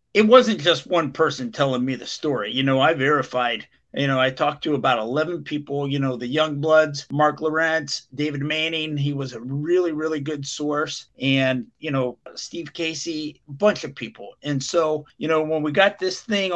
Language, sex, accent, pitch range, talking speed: English, male, American, 140-180 Hz, 195 wpm